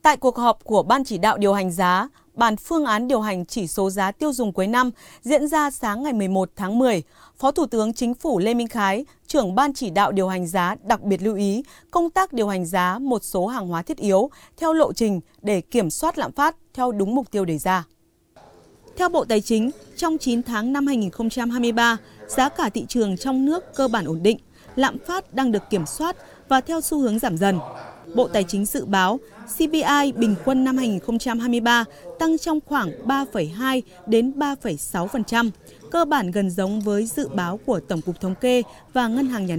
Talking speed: 205 wpm